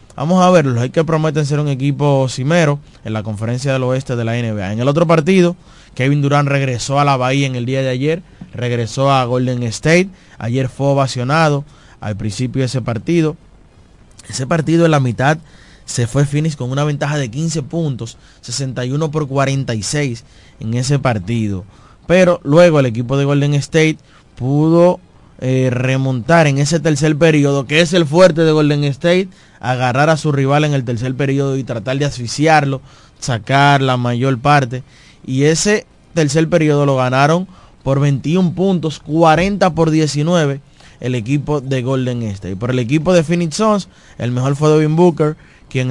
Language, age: Spanish, 20-39